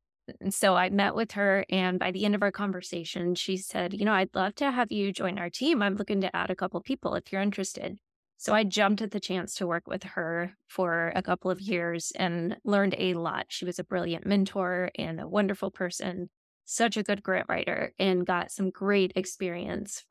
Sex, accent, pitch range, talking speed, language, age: female, American, 185-210 Hz, 220 wpm, English, 20-39